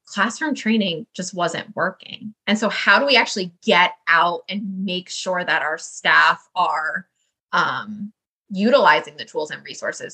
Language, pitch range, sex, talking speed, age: English, 180-230 Hz, female, 155 wpm, 20-39